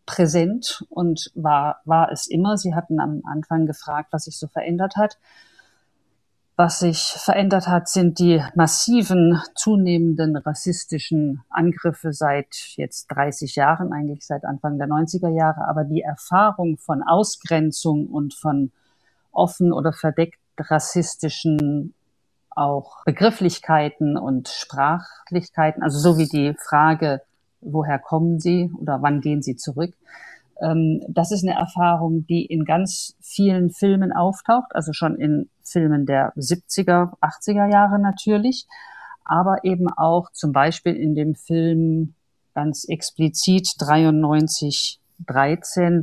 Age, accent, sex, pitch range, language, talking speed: 50-69, German, female, 150-175 Hz, German, 125 wpm